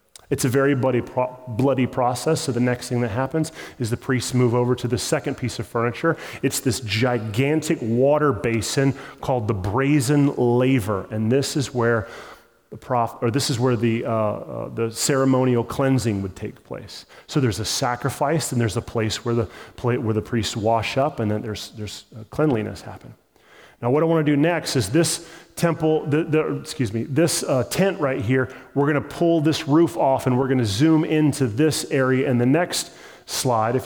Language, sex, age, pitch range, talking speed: English, male, 30-49, 120-150 Hz, 200 wpm